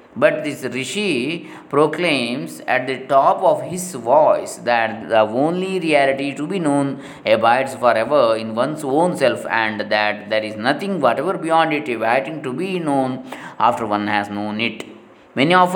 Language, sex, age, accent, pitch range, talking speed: Kannada, male, 20-39, native, 120-170 Hz, 160 wpm